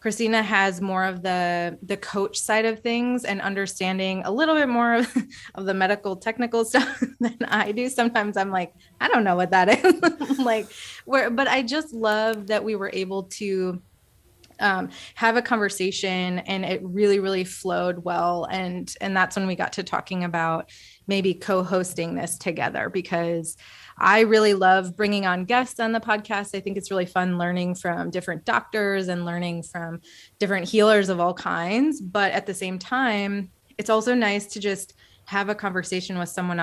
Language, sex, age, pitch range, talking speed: English, female, 20-39, 180-220 Hz, 180 wpm